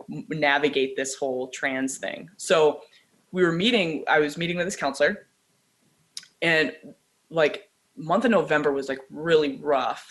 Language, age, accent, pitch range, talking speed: English, 20-39, American, 140-185 Hz, 140 wpm